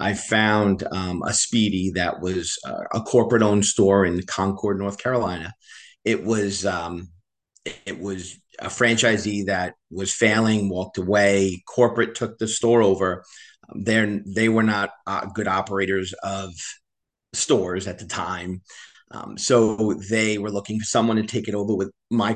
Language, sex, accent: English, male, American